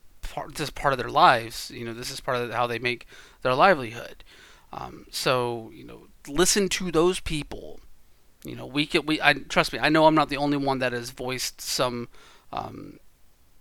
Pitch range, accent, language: 120-140 Hz, American, English